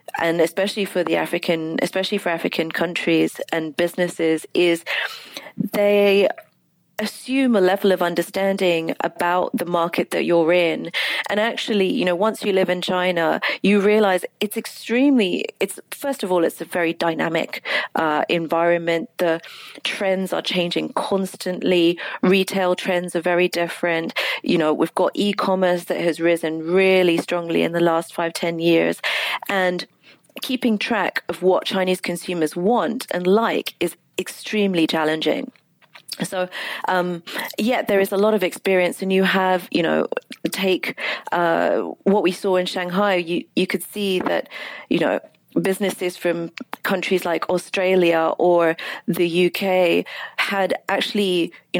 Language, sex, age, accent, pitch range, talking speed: English, female, 40-59, British, 170-200 Hz, 145 wpm